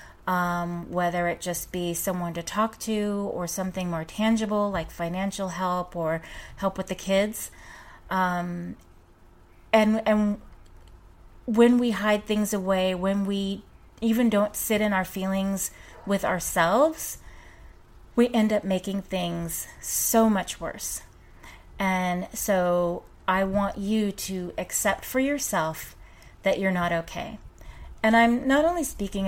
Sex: female